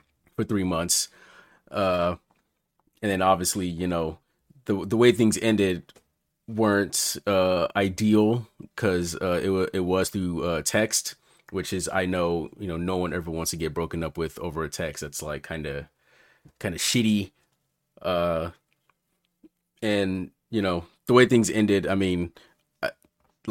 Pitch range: 85-110 Hz